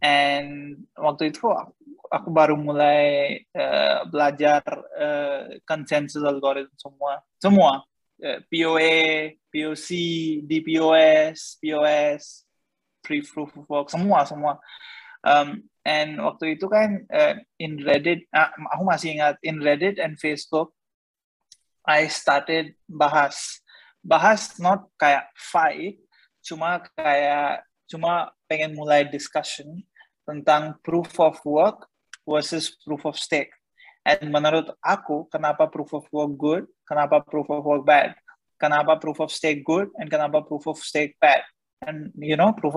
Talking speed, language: 120 wpm, Indonesian